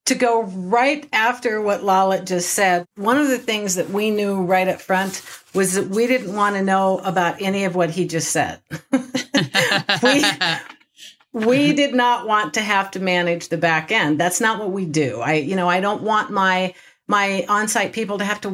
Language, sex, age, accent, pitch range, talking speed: English, female, 50-69, American, 175-220 Hz, 200 wpm